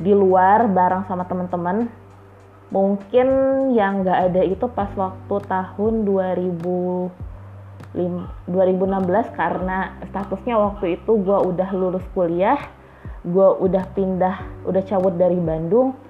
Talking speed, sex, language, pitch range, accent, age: 110 wpm, female, Indonesian, 165-195 Hz, native, 20-39